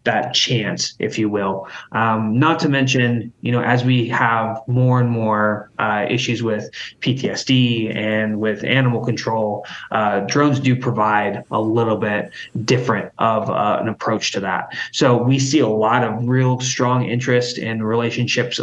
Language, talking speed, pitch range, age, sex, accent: English, 160 wpm, 110-125 Hz, 20-39, male, American